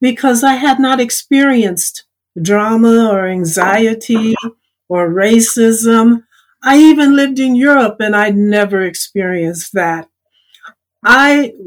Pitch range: 210-260 Hz